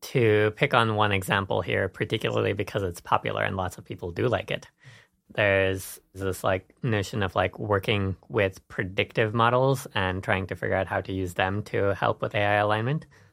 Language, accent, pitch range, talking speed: English, American, 95-115 Hz, 185 wpm